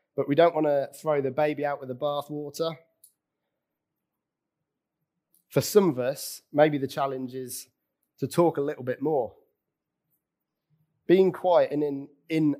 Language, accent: English, British